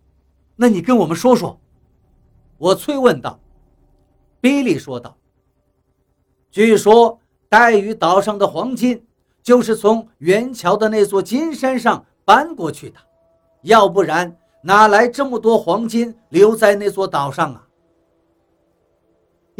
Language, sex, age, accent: Chinese, male, 50-69, native